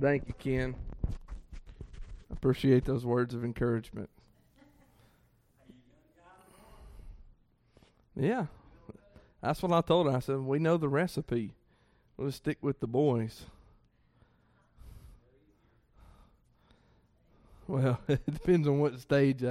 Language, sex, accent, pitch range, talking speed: English, male, American, 115-140 Hz, 95 wpm